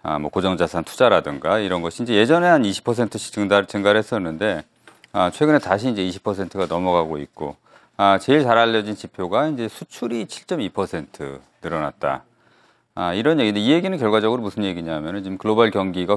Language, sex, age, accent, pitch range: Korean, male, 40-59, native, 95-125 Hz